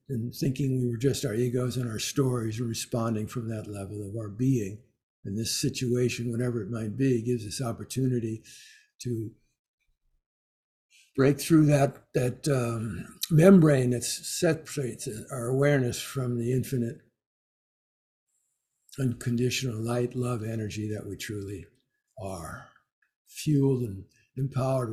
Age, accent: 60-79, American